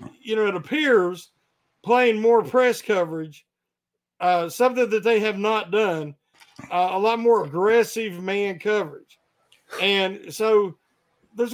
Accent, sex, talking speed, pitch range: American, male, 130 wpm, 180-230 Hz